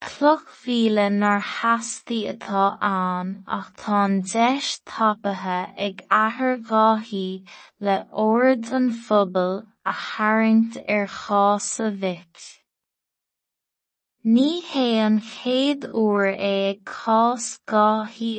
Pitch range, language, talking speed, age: 195-225 Hz, English, 85 wpm, 20-39